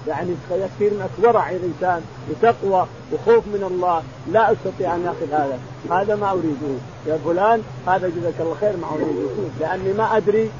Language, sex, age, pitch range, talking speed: Arabic, male, 50-69, 150-210 Hz, 160 wpm